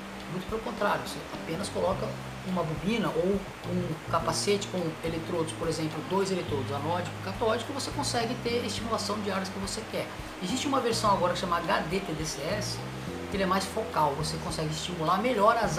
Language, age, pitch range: Portuguese, 20-39, 160-220 Hz